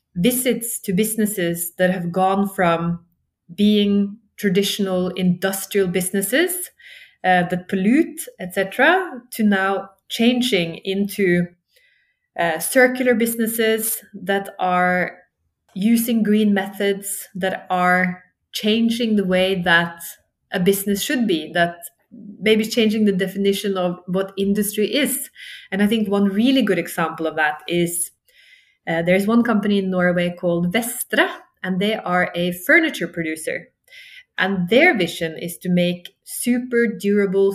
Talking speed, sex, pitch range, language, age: 125 wpm, female, 180-225 Hz, English, 20-39